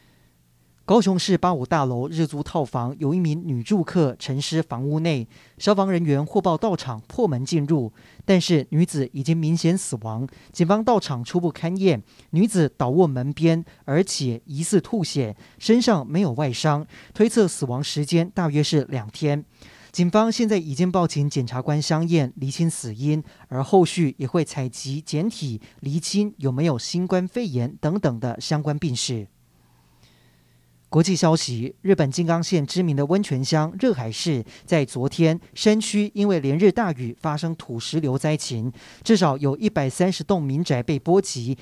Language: Chinese